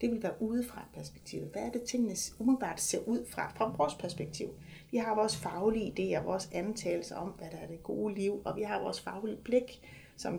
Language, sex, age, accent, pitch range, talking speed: Danish, female, 30-49, native, 185-225 Hz, 215 wpm